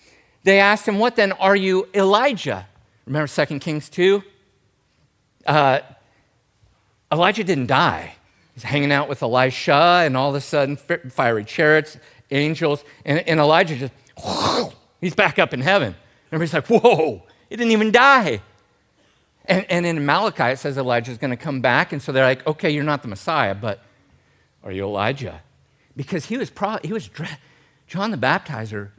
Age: 50-69